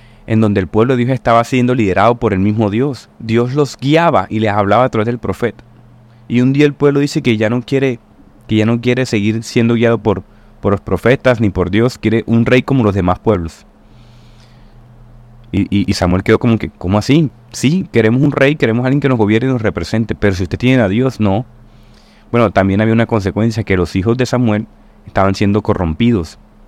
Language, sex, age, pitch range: Spanish, male, 30-49, 105-120 Hz